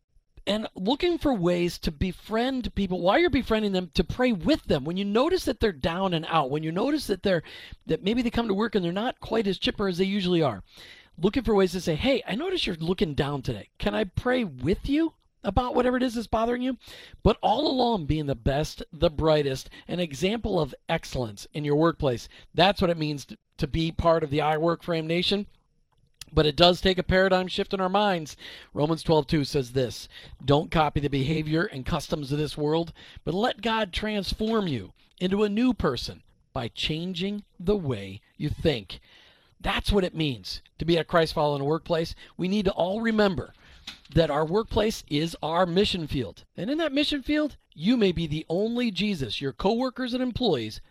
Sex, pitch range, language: male, 155-215 Hz, English